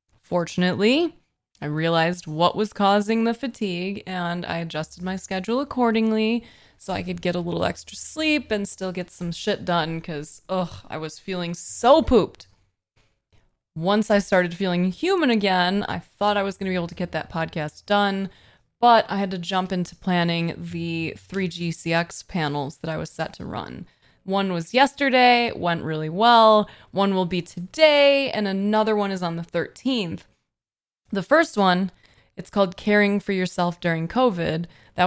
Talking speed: 170 wpm